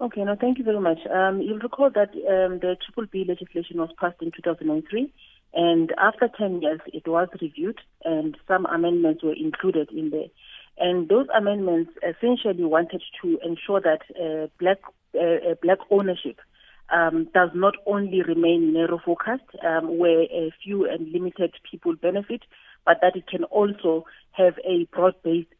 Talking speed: 155 wpm